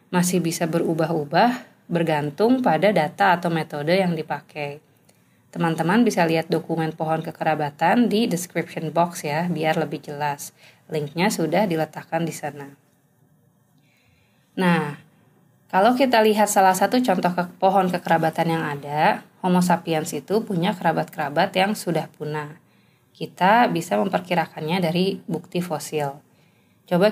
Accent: native